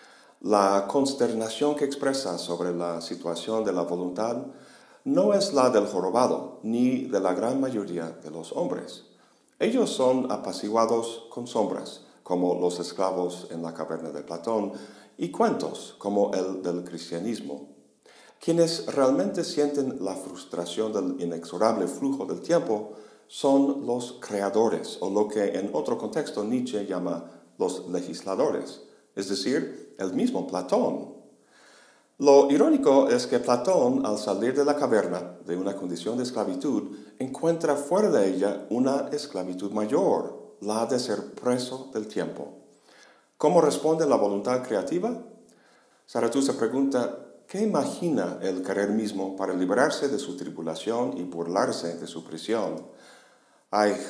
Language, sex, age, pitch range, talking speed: Spanish, male, 50-69, 90-130 Hz, 135 wpm